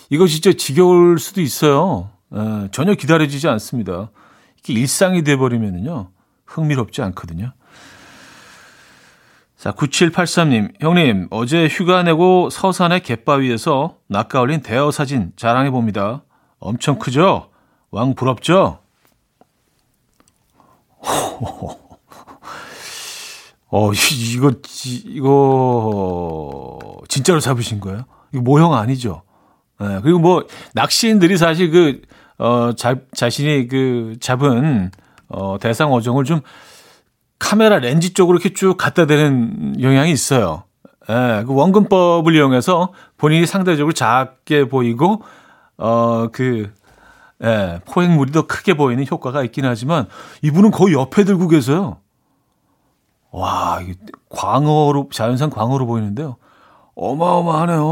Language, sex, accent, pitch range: Korean, male, native, 115-170 Hz